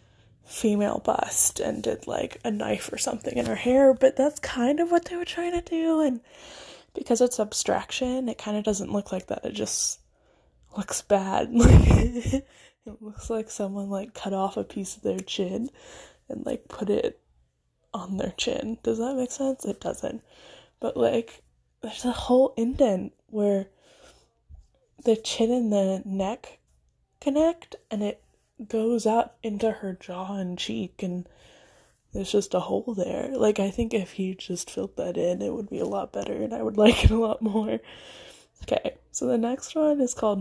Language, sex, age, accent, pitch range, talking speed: English, female, 10-29, American, 195-255 Hz, 180 wpm